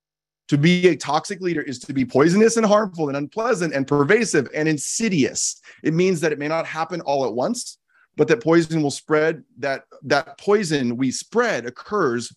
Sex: male